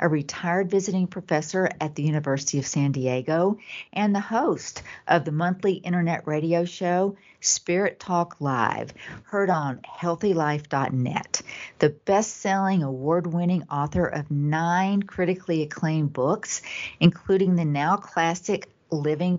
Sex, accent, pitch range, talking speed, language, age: female, American, 150-185 Hz, 120 wpm, English, 50-69